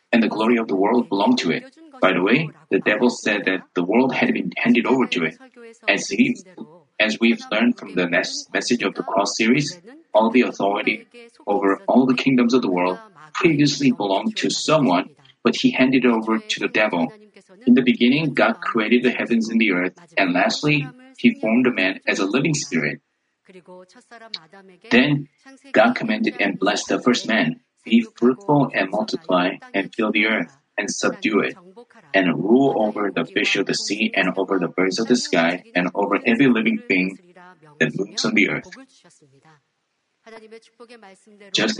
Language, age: Korean, 30-49